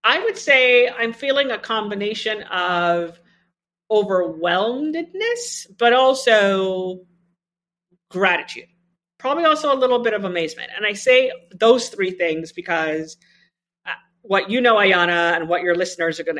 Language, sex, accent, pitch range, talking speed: English, female, American, 170-210 Hz, 130 wpm